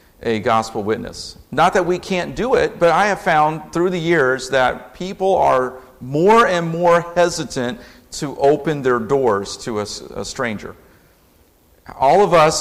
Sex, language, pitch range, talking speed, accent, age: male, English, 115-150 Hz, 160 wpm, American, 50-69